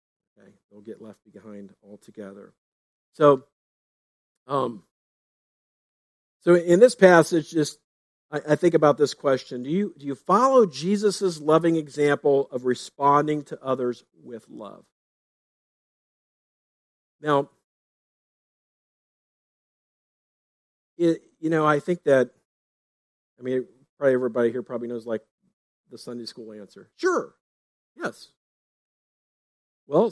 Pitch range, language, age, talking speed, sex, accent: 120-160 Hz, English, 50-69, 110 wpm, male, American